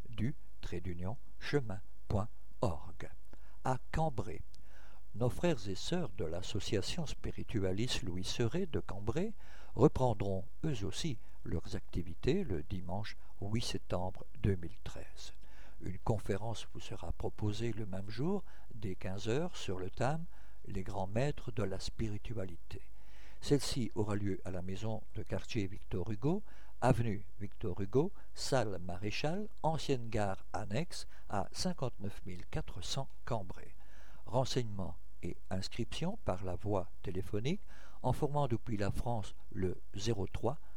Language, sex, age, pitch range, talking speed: French, male, 60-79, 95-125 Hz, 120 wpm